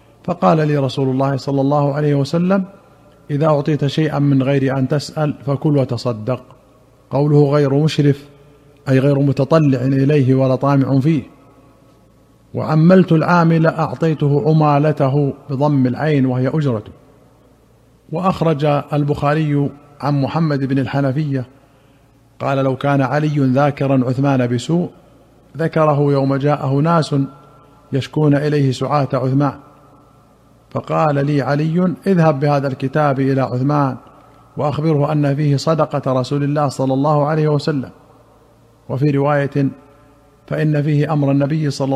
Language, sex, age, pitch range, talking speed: Arabic, male, 50-69, 135-150 Hz, 115 wpm